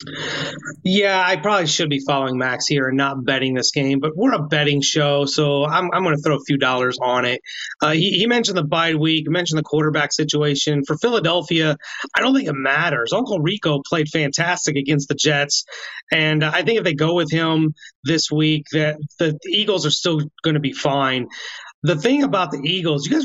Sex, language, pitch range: male, English, 145-180 Hz